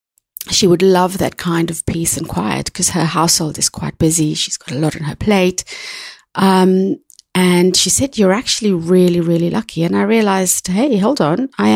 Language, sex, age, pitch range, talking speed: English, female, 30-49, 160-190 Hz, 195 wpm